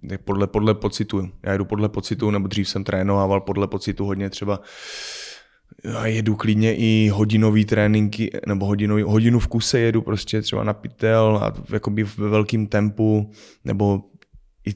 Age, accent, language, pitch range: 20-39, native, Czech, 100-110 Hz